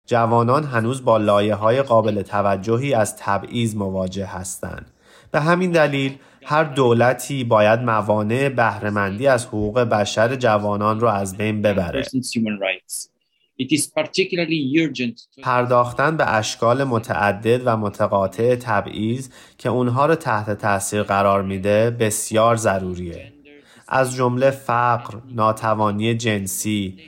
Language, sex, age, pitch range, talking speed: Persian, male, 30-49, 105-125 Hz, 105 wpm